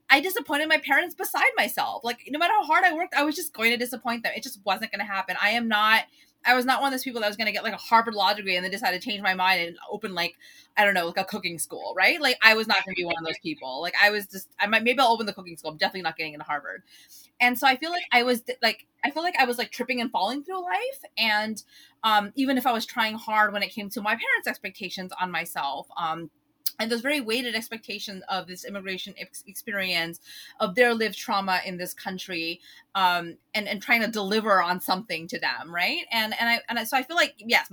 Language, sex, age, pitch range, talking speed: English, female, 20-39, 190-245 Hz, 265 wpm